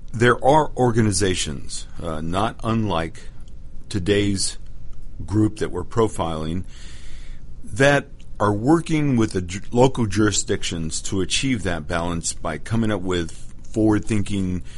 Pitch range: 85-115 Hz